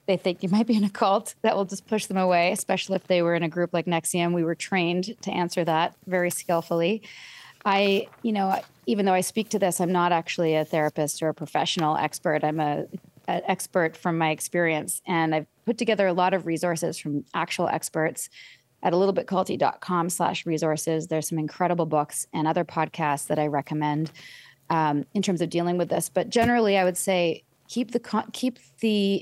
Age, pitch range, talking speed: 30-49, 160-190 Hz, 200 wpm